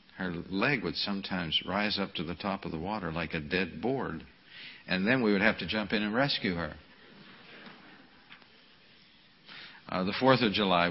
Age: 60-79